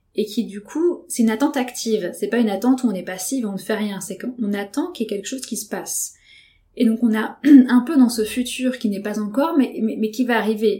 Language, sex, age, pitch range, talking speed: French, female, 20-39, 195-240 Hz, 280 wpm